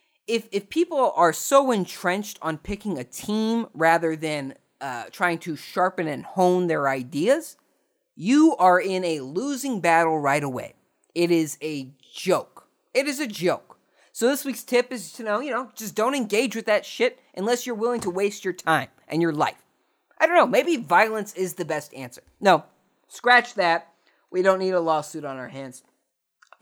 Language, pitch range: English, 150-220 Hz